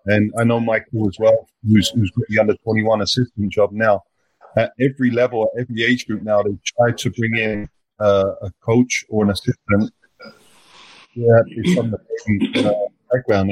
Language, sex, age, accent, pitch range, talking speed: English, male, 40-59, British, 110-125 Hz, 170 wpm